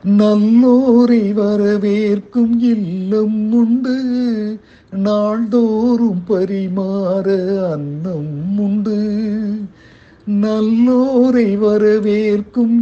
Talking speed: 45 wpm